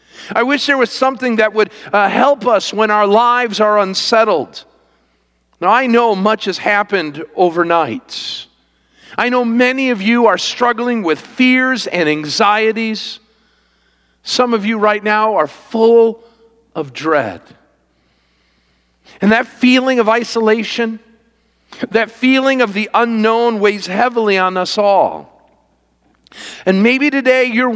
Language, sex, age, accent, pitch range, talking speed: English, male, 50-69, American, 190-245 Hz, 130 wpm